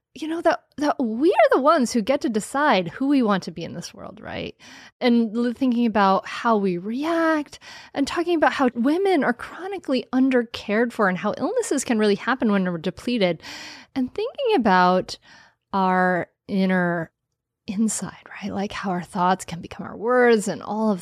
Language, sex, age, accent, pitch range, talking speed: English, female, 30-49, American, 195-280 Hz, 180 wpm